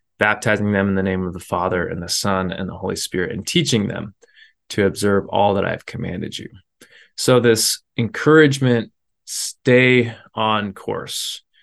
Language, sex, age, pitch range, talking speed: English, male, 20-39, 100-125 Hz, 165 wpm